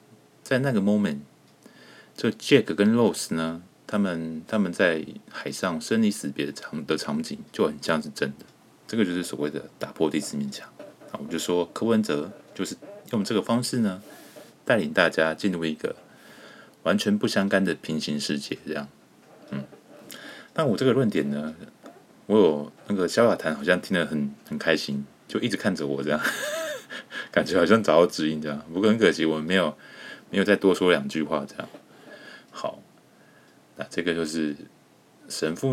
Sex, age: male, 30-49